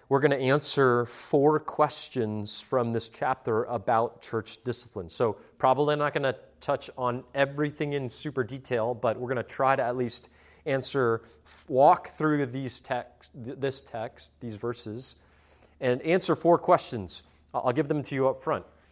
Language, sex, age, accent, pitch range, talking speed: English, male, 30-49, American, 90-145 Hz, 160 wpm